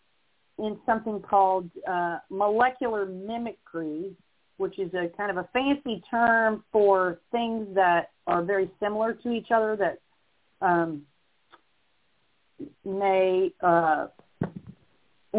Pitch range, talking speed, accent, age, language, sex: 175-215 Hz, 105 wpm, American, 40-59, English, female